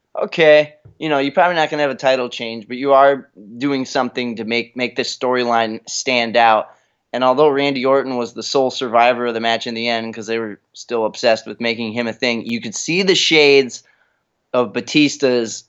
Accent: American